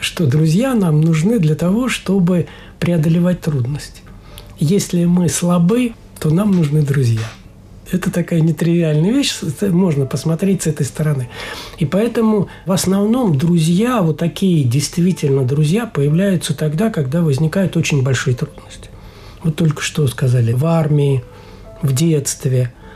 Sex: male